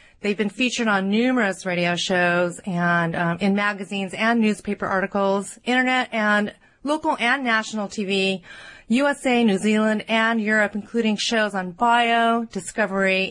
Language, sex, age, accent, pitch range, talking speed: English, female, 30-49, American, 190-235 Hz, 135 wpm